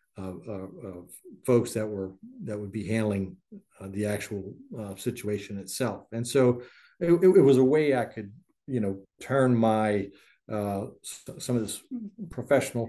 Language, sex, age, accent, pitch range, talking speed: English, male, 50-69, American, 105-125 Hz, 170 wpm